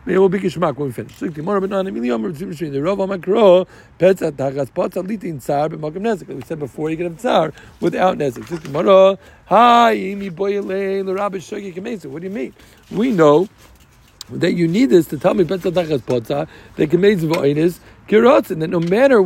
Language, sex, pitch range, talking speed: English, male, 150-195 Hz, 65 wpm